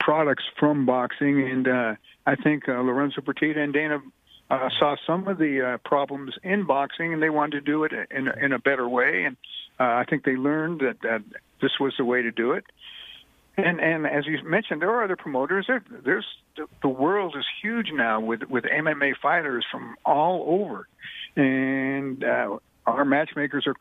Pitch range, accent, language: 135-155 Hz, American, English